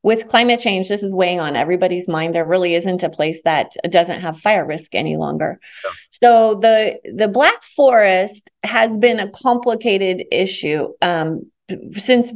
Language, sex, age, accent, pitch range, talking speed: English, female, 30-49, American, 175-225 Hz, 160 wpm